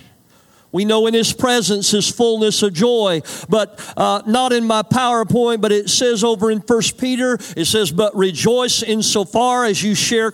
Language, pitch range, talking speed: English, 200-245 Hz, 185 wpm